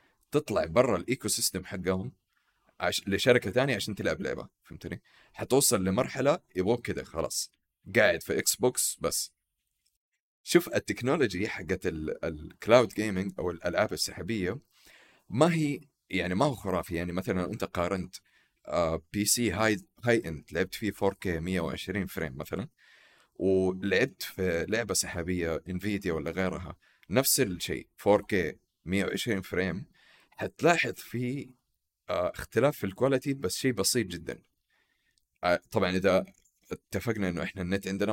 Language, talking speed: Arabic, 125 wpm